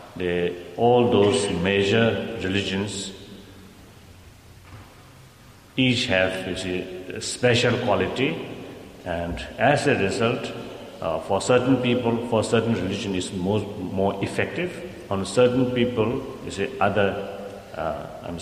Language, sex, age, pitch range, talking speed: English, male, 60-79, 95-115 Hz, 110 wpm